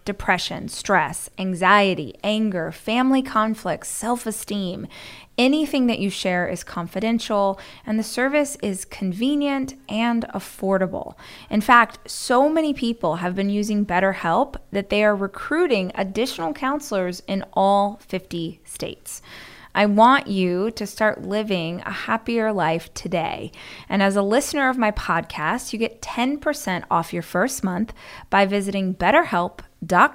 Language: English